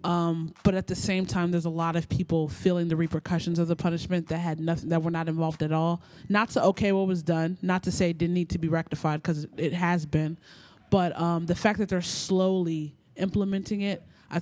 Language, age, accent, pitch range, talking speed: English, 20-39, American, 160-180 Hz, 230 wpm